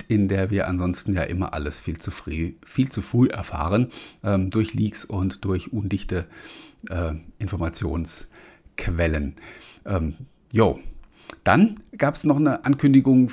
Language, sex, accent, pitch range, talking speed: German, male, German, 95-130 Hz, 135 wpm